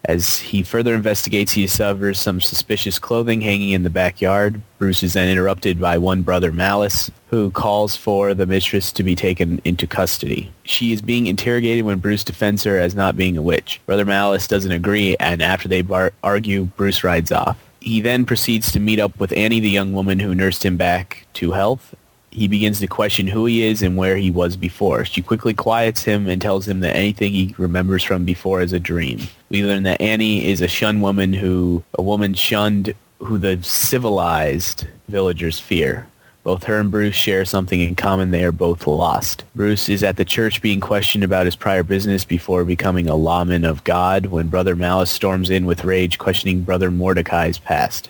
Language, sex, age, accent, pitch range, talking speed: English, male, 30-49, American, 90-105 Hz, 195 wpm